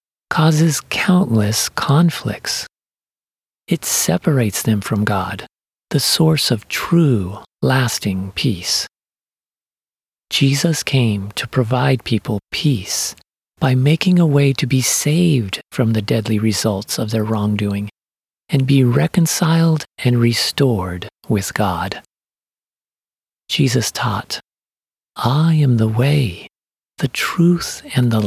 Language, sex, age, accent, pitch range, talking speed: English, male, 40-59, American, 105-145 Hz, 110 wpm